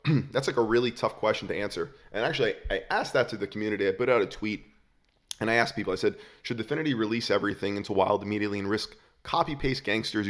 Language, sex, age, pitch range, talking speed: English, male, 20-39, 100-120 Hz, 220 wpm